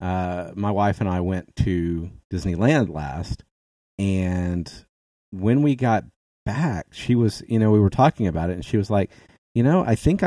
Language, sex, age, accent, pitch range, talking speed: English, male, 30-49, American, 90-115 Hz, 180 wpm